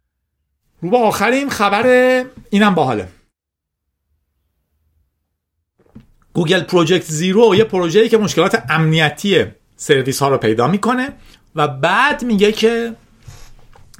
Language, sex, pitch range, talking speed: Persian, male, 135-205 Hz, 95 wpm